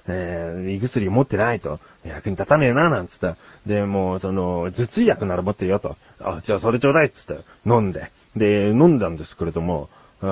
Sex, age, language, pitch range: male, 30-49, Japanese, 100-155 Hz